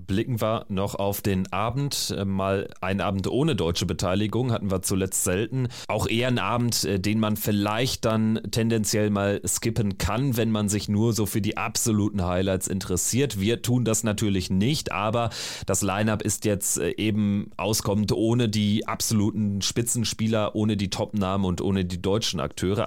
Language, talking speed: German, 165 wpm